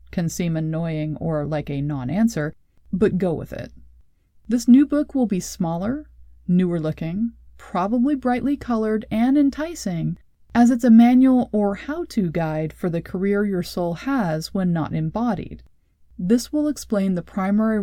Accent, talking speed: American, 150 wpm